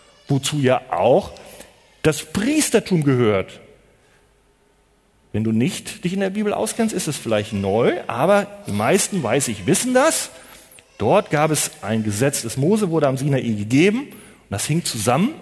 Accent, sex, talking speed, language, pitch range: German, male, 155 wpm, German, 135-215 Hz